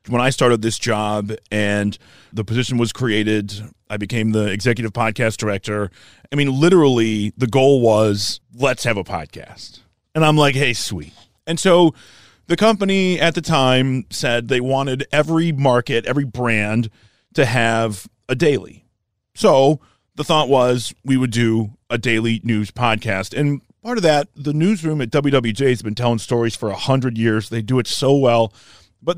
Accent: American